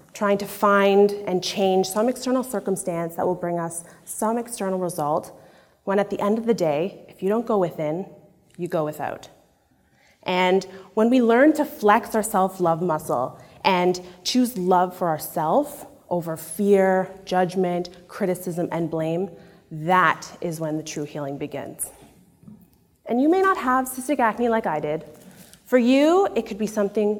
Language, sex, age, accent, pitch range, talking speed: English, female, 30-49, American, 175-220 Hz, 160 wpm